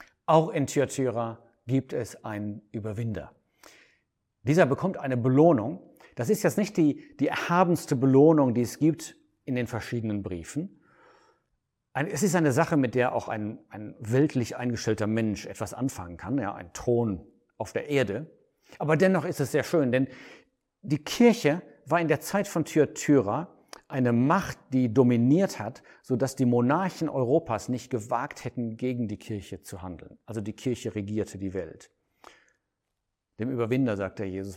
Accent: German